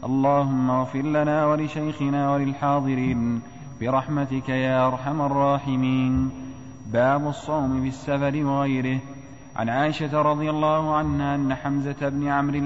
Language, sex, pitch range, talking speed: Arabic, male, 135-145 Hz, 105 wpm